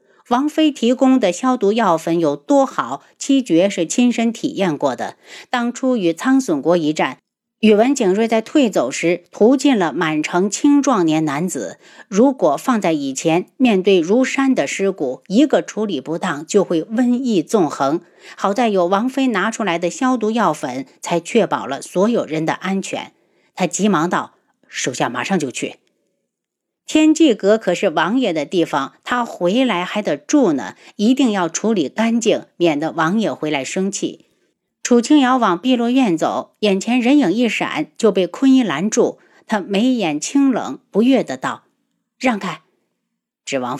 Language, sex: Chinese, female